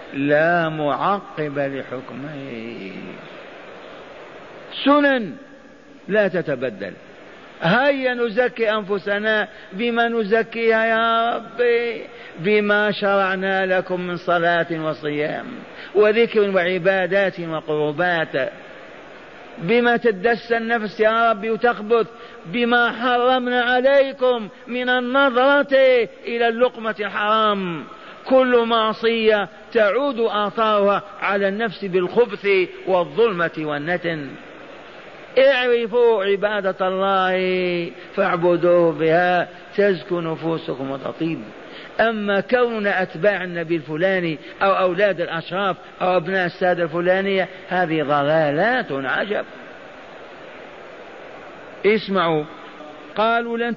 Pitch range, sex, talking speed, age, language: 175-235 Hz, male, 80 wpm, 50-69, Arabic